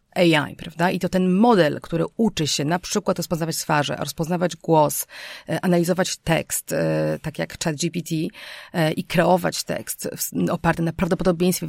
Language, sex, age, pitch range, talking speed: Polish, female, 40-59, 160-185 Hz, 135 wpm